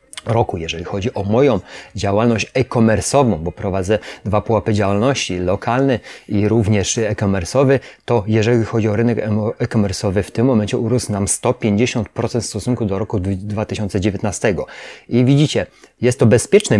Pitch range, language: 110-130 Hz, Polish